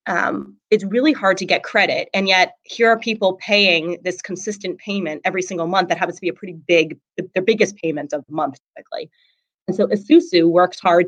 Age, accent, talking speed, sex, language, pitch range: 30-49, American, 210 wpm, female, English, 170-205 Hz